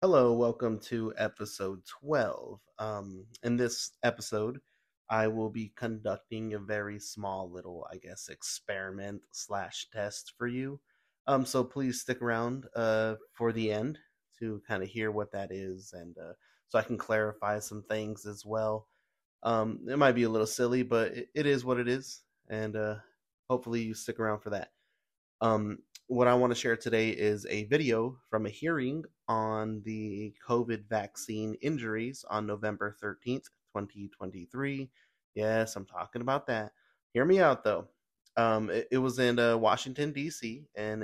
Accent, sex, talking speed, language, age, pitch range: American, male, 165 wpm, English, 30-49, 105-120 Hz